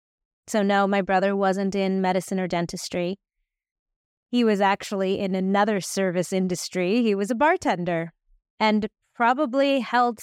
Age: 30-49